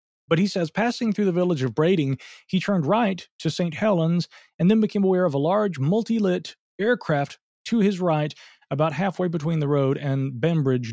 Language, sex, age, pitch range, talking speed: English, male, 40-59, 135-175 Hz, 185 wpm